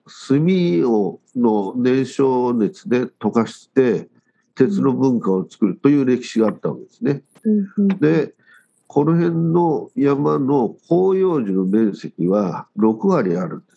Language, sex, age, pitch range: Japanese, male, 50-69, 115-175 Hz